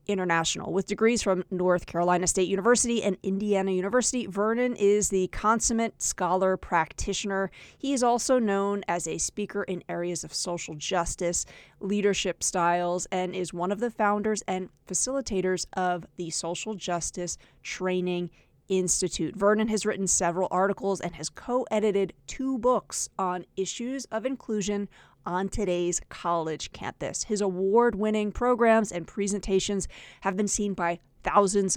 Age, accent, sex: 30-49, American, female